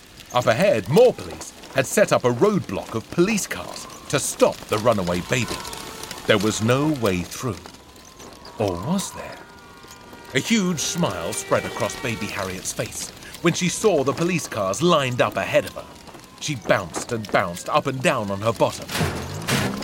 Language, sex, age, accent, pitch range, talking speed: English, male, 40-59, British, 115-195 Hz, 165 wpm